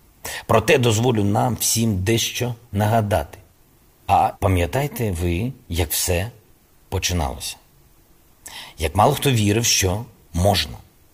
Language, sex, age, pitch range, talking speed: Ukrainian, male, 50-69, 90-115 Hz, 95 wpm